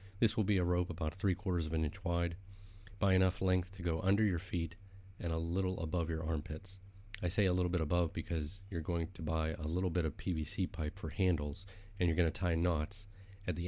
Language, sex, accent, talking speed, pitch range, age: English, male, American, 230 wpm, 80-95 Hz, 30-49